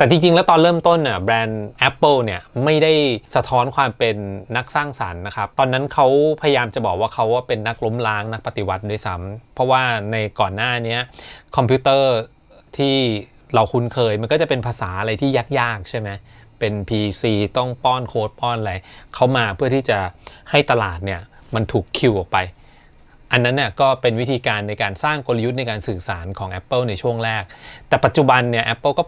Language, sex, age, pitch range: Thai, male, 20-39, 105-130 Hz